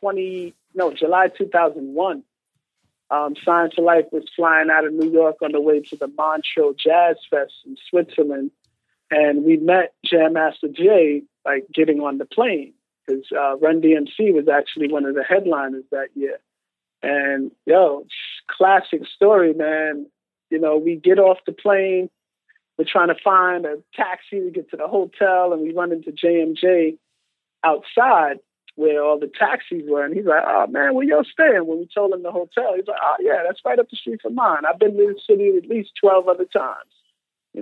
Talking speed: 185 wpm